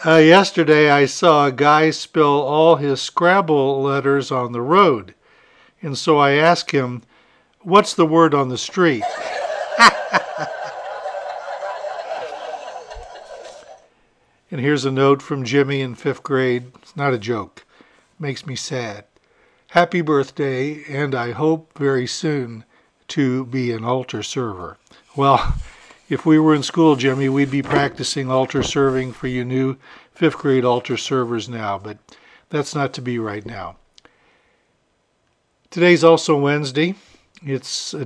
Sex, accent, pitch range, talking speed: male, American, 125-155 Hz, 135 wpm